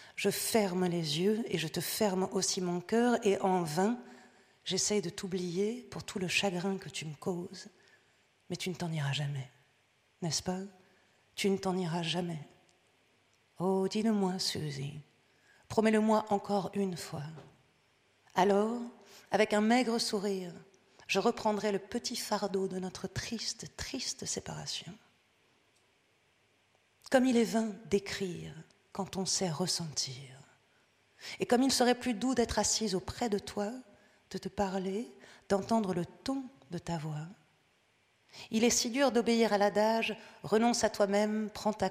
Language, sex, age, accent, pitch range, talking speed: French, female, 40-59, French, 175-210 Hz, 145 wpm